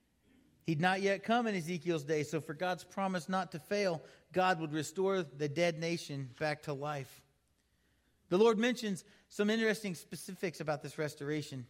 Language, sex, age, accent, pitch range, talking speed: English, male, 40-59, American, 150-185 Hz, 165 wpm